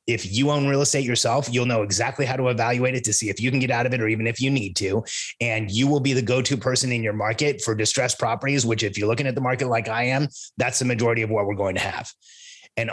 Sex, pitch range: male, 115-140 Hz